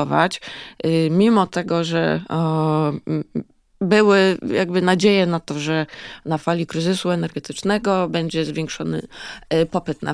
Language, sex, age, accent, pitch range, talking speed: Polish, female, 20-39, native, 165-195 Hz, 100 wpm